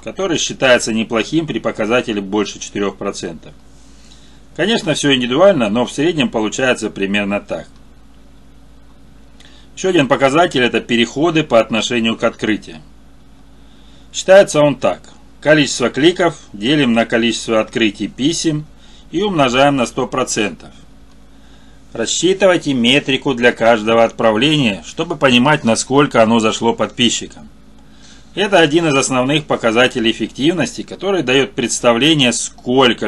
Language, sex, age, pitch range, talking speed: Russian, male, 30-49, 110-140 Hz, 110 wpm